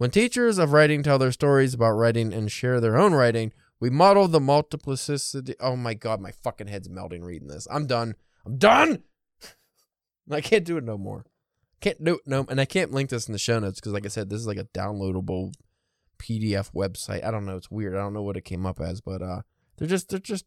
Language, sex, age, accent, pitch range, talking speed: English, male, 20-39, American, 105-140 Hz, 235 wpm